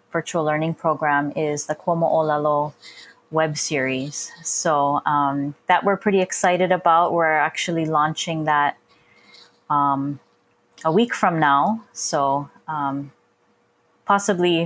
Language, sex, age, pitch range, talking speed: English, female, 20-39, 145-175 Hz, 115 wpm